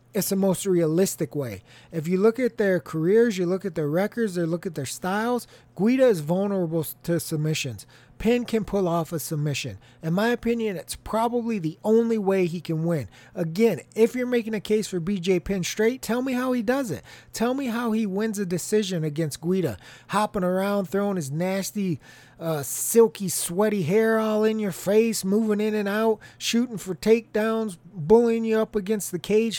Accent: American